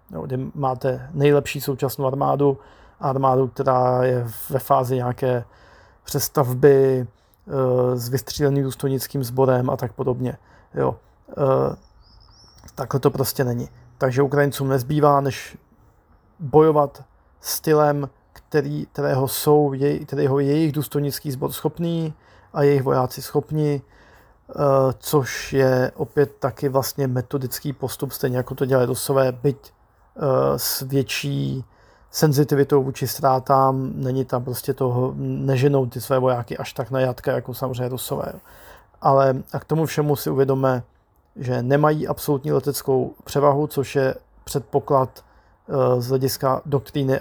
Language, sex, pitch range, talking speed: Slovak, male, 130-140 Hz, 120 wpm